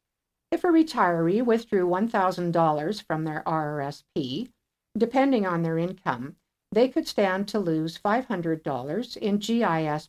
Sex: female